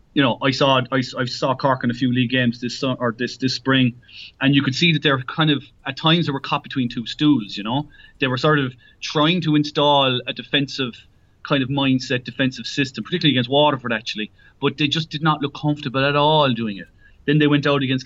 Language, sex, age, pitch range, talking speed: English, male, 30-49, 120-145 Hz, 235 wpm